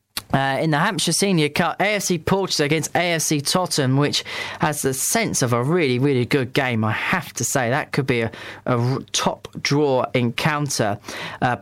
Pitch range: 130-170 Hz